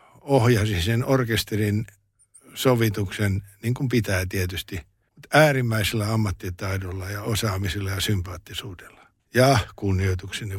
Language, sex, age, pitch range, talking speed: Finnish, male, 60-79, 105-125 Hz, 95 wpm